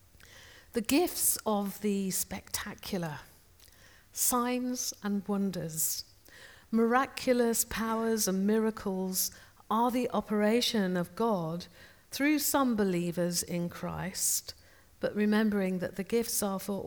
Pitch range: 175-225 Hz